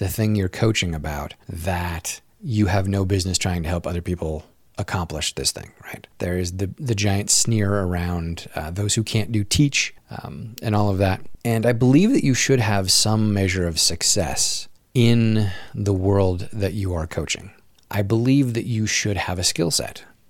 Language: English